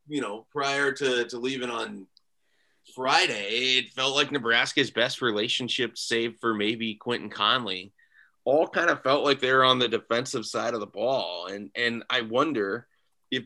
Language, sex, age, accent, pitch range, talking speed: English, male, 30-49, American, 105-120 Hz, 165 wpm